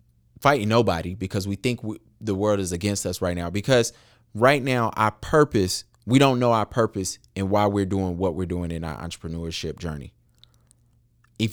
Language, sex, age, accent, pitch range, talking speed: English, male, 30-49, American, 105-130 Hz, 175 wpm